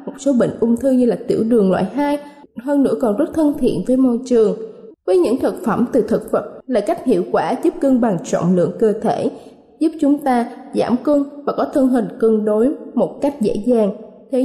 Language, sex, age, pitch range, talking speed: Vietnamese, female, 20-39, 220-280 Hz, 220 wpm